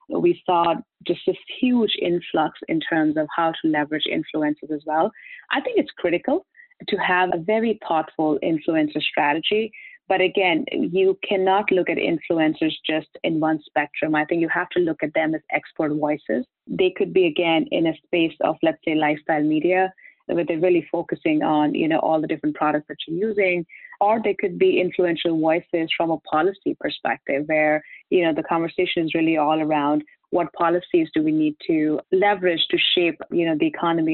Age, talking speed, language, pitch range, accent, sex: 30-49, 185 wpm, English, 155-200 Hz, Indian, female